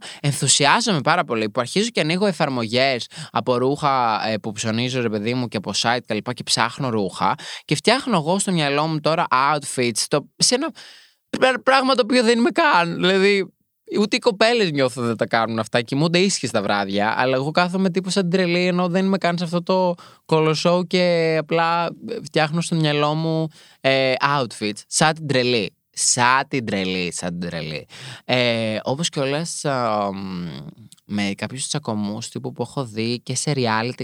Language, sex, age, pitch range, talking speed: Greek, male, 20-39, 110-175 Hz, 170 wpm